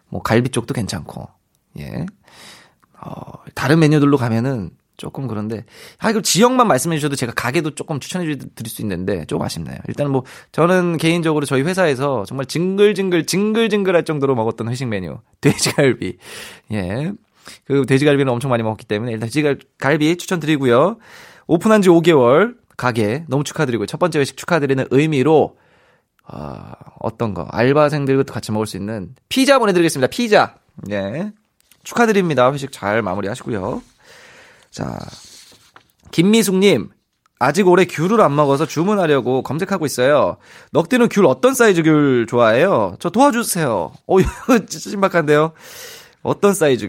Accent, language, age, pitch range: native, Korean, 20-39, 125-185 Hz